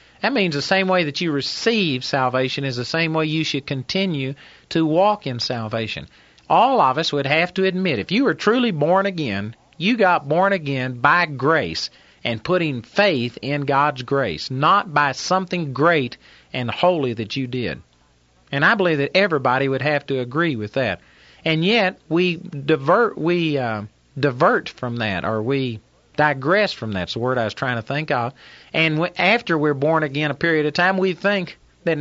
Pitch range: 130-180 Hz